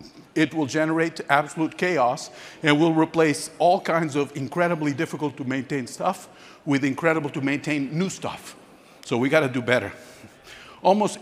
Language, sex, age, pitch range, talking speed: English, male, 50-69, 135-180 Hz, 155 wpm